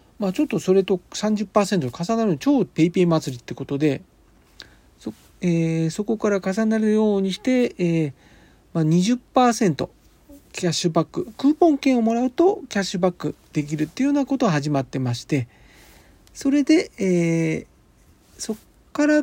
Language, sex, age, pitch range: Japanese, male, 40-59, 145-235 Hz